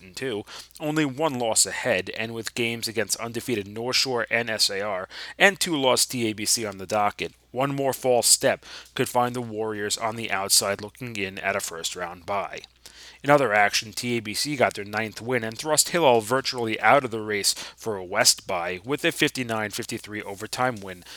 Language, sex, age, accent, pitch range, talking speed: English, male, 30-49, American, 105-130 Hz, 180 wpm